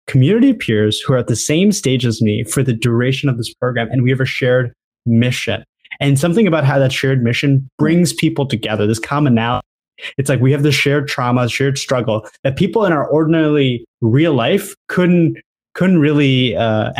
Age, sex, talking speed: 20-39, male, 190 wpm